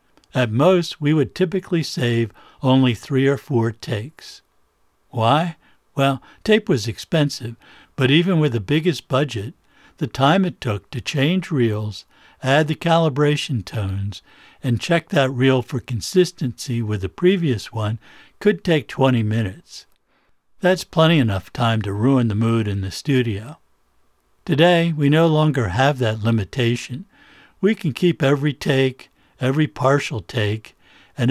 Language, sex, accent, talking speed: English, male, American, 140 wpm